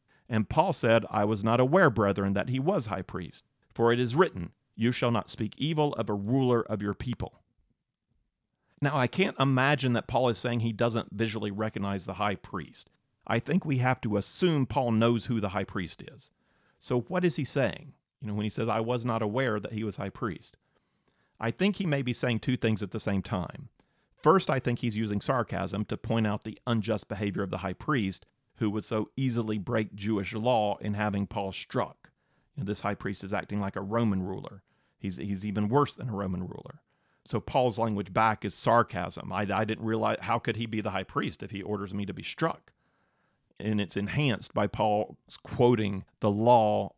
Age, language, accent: 40-59, English, American